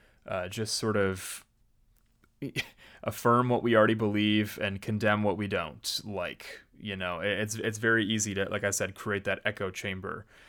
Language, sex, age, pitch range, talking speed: English, male, 20-39, 100-120 Hz, 165 wpm